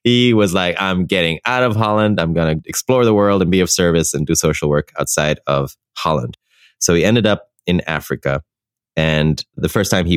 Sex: male